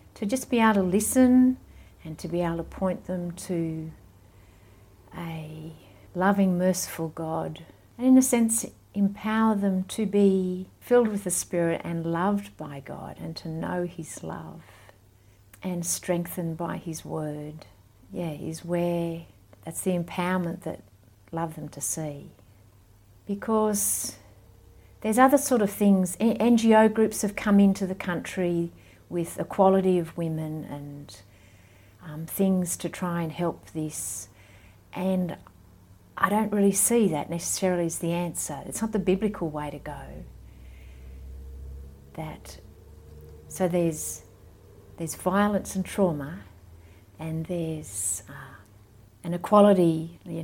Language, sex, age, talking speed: English, female, 60-79, 130 wpm